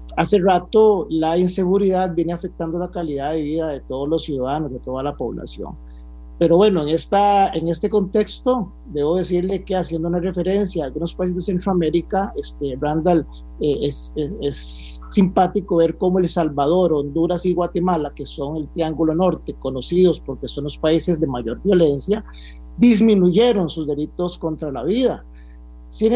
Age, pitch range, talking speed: 50-69, 145-190 Hz, 160 wpm